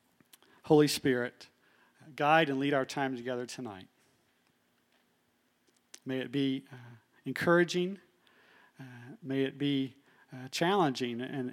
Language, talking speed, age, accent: English, 115 wpm, 40-59, American